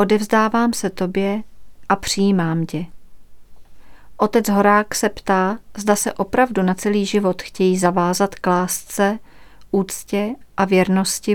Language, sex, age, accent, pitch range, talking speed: Czech, female, 40-59, native, 190-215 Hz, 120 wpm